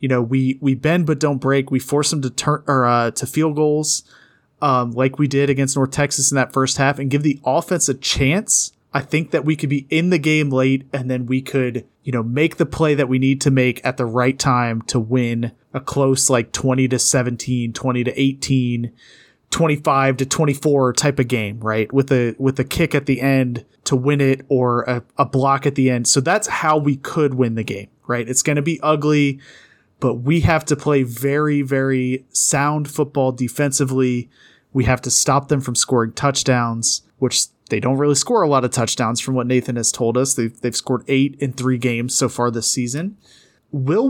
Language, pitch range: English, 125-145 Hz